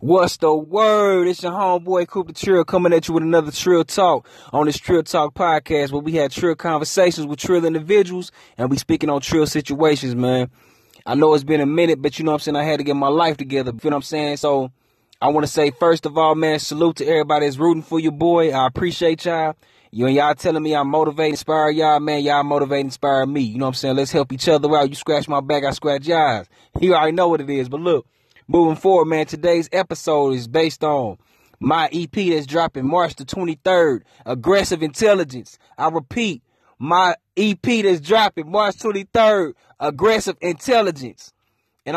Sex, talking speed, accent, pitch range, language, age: male, 210 wpm, American, 140-170 Hz, English, 20-39